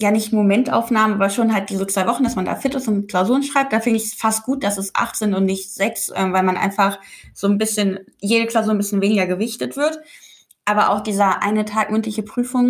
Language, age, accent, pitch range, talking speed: German, 20-39, German, 195-225 Hz, 240 wpm